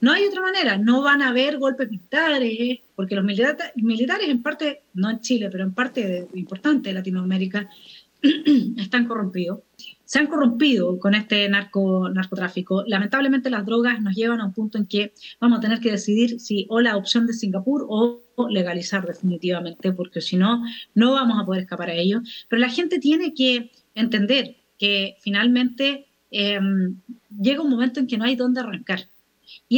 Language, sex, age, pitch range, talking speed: Spanish, female, 30-49, 210-280 Hz, 180 wpm